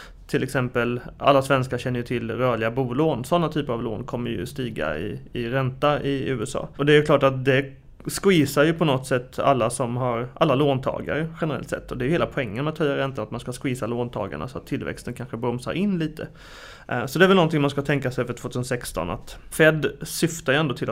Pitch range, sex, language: 125-150 Hz, male, Swedish